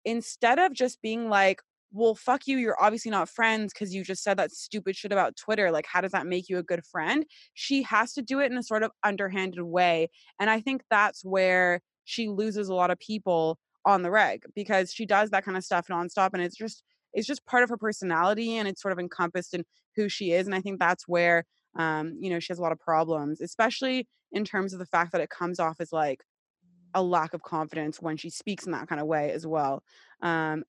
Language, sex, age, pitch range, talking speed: English, female, 20-39, 175-215 Hz, 240 wpm